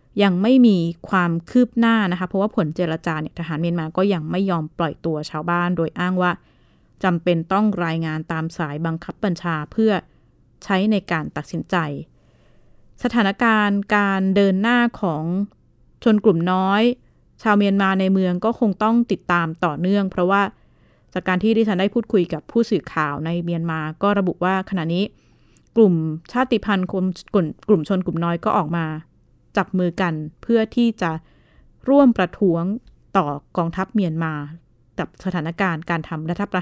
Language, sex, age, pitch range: Thai, female, 20-39, 170-205 Hz